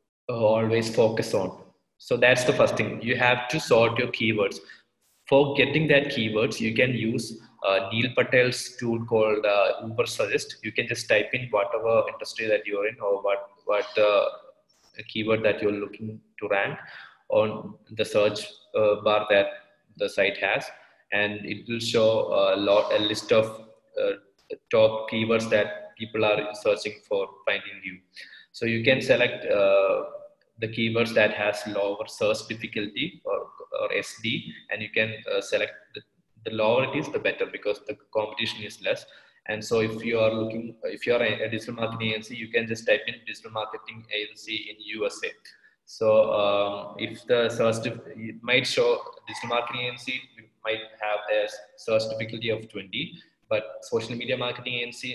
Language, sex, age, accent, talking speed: English, male, 20-39, Indian, 170 wpm